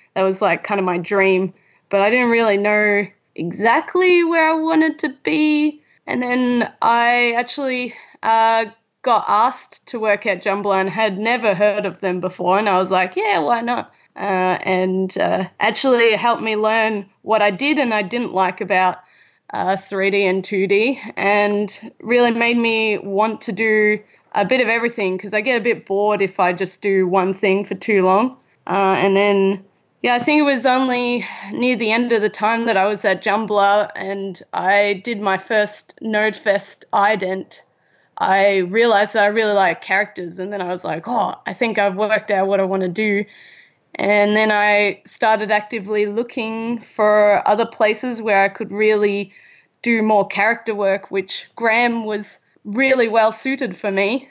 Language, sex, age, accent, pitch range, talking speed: English, female, 20-39, Australian, 195-230 Hz, 180 wpm